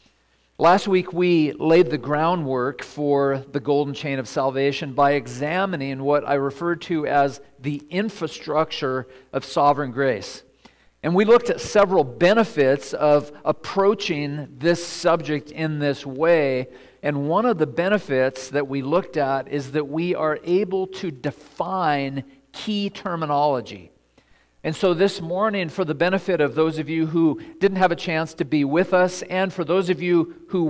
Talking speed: 160 wpm